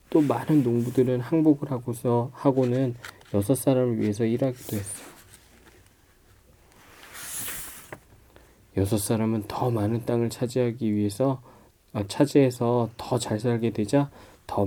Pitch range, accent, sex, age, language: 100-125 Hz, native, male, 20-39, Korean